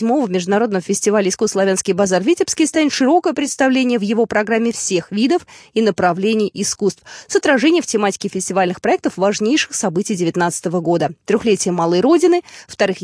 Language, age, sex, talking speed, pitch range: Russian, 20-39, female, 145 wpm, 190-260 Hz